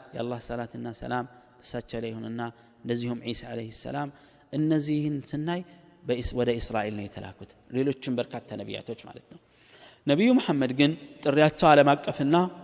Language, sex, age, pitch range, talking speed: Amharic, male, 30-49, 120-160 Hz, 120 wpm